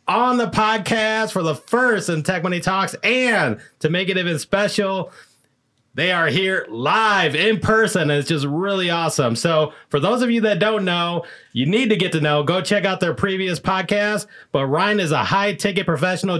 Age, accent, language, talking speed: 30-49, American, English, 195 wpm